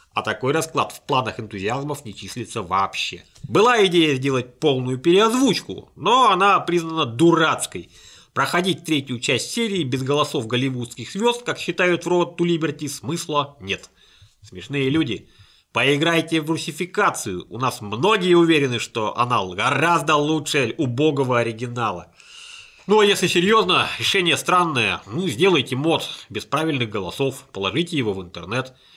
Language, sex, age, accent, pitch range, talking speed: Russian, male, 30-49, native, 120-175 Hz, 135 wpm